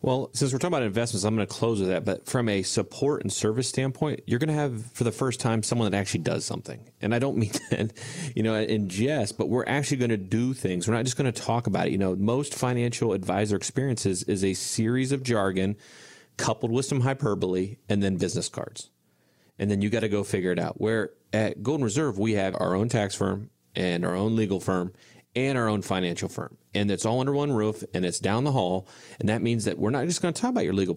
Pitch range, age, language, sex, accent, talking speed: 100-130 Hz, 30-49, English, male, American, 250 wpm